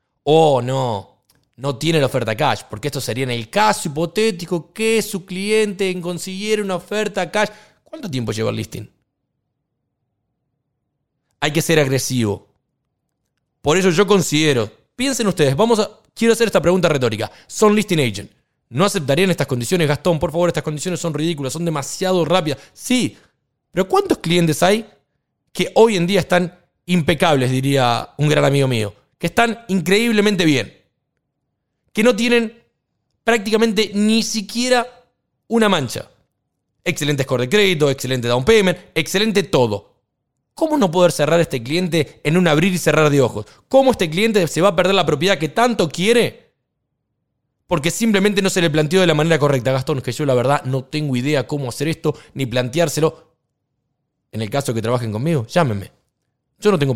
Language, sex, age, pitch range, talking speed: Spanish, male, 30-49, 135-195 Hz, 165 wpm